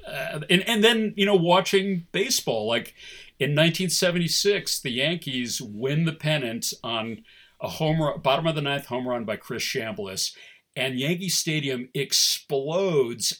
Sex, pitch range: male, 135-195 Hz